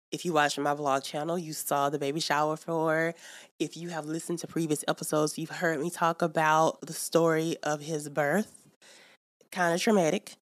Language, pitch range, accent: English, 145-175 Hz, American